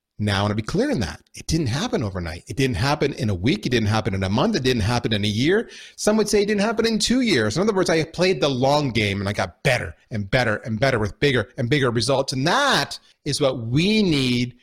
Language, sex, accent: English, male, American